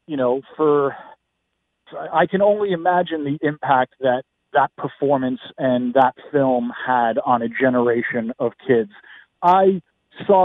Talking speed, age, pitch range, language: 130 wpm, 40-59, 130-170 Hz, English